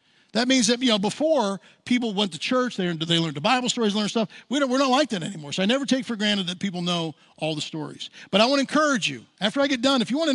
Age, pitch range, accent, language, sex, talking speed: 50-69, 200-260 Hz, American, English, male, 285 wpm